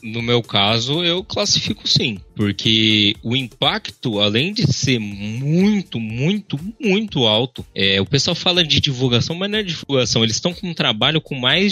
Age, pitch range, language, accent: 20-39, 110-145 Hz, Portuguese, Brazilian